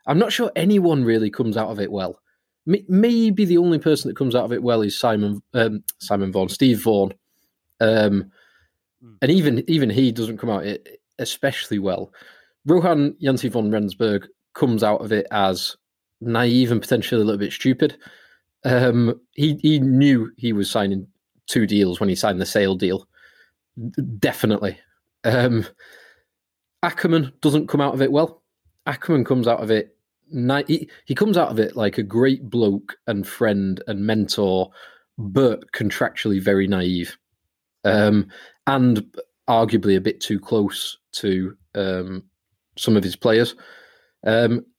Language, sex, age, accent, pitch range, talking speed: English, male, 20-39, British, 100-130 Hz, 155 wpm